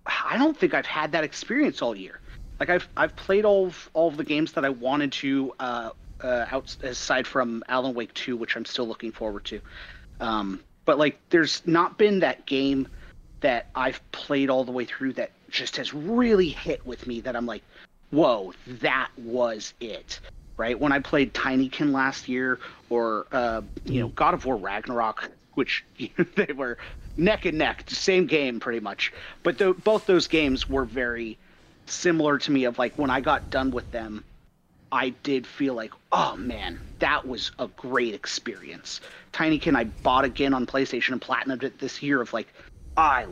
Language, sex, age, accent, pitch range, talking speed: English, male, 30-49, American, 120-155 Hz, 185 wpm